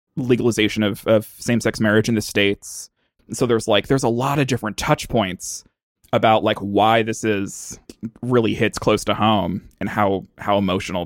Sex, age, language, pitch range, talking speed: male, 20-39, English, 105-125 Hz, 175 wpm